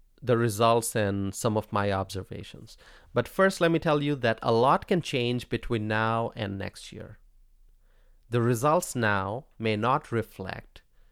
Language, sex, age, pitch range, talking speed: English, male, 40-59, 95-125 Hz, 155 wpm